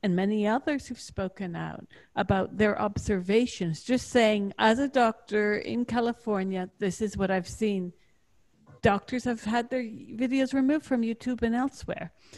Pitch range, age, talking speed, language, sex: 210-250 Hz, 50-69, 150 wpm, English, female